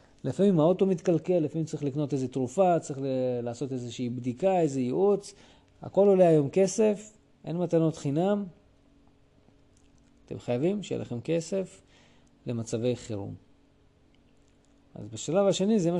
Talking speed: 130 wpm